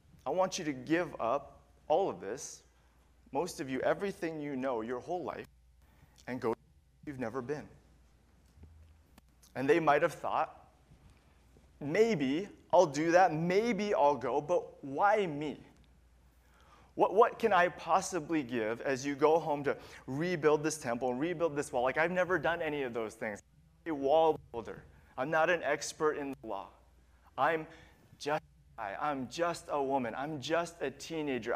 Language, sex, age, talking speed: English, male, 30-49, 155 wpm